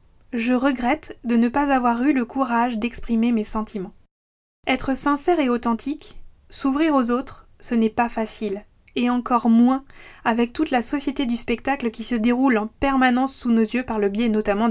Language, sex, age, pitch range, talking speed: French, female, 20-39, 225-270 Hz, 180 wpm